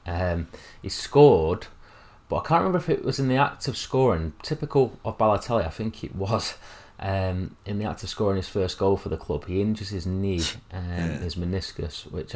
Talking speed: 205 wpm